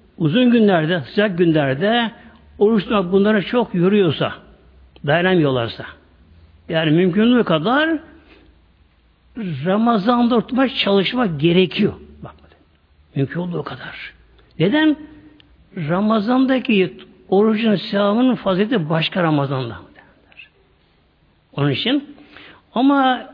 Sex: male